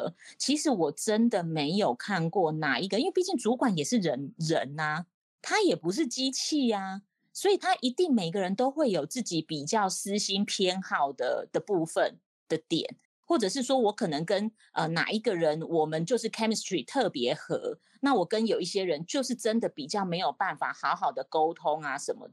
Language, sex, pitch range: Chinese, female, 170-245 Hz